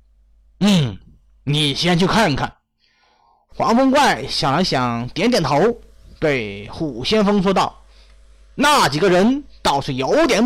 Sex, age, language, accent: male, 30-49, Chinese, native